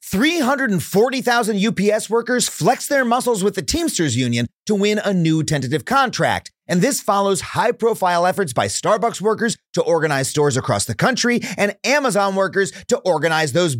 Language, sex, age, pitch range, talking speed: English, male, 30-49, 165-240 Hz, 155 wpm